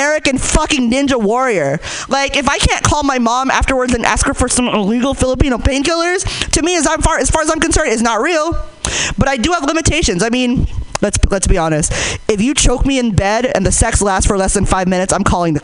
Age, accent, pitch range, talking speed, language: 20-39, American, 195-280 Hz, 240 wpm, English